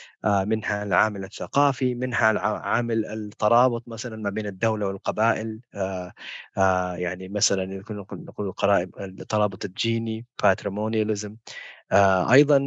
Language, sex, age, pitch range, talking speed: Arabic, male, 30-49, 105-130 Hz, 90 wpm